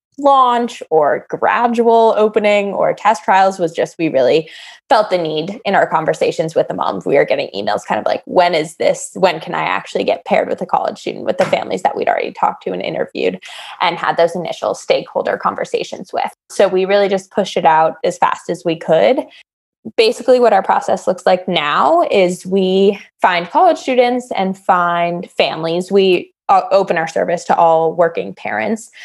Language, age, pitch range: English, 20-39, 175-230 Hz